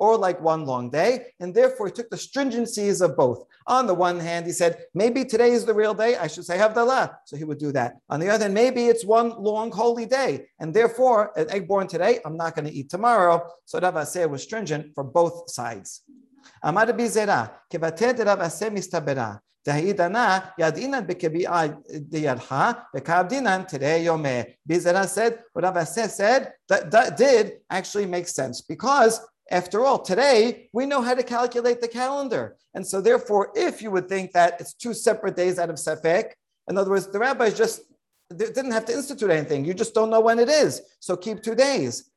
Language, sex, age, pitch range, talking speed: English, male, 50-69, 170-235 Hz, 185 wpm